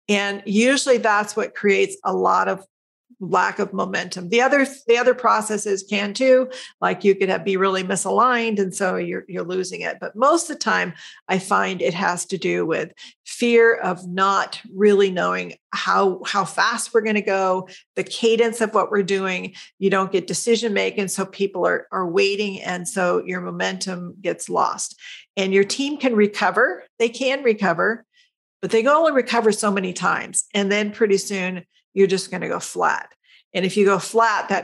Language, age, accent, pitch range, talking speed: English, 50-69, American, 185-230 Hz, 185 wpm